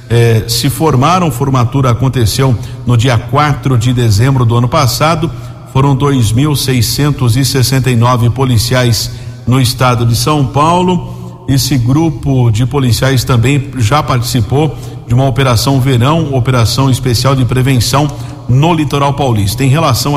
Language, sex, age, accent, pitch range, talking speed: Portuguese, male, 50-69, Brazilian, 120-140 Hz, 130 wpm